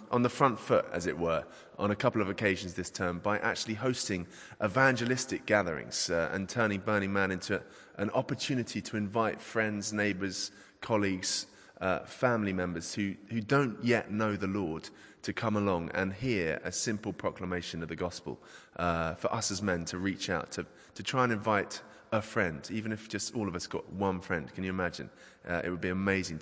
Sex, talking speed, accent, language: male, 195 wpm, British, English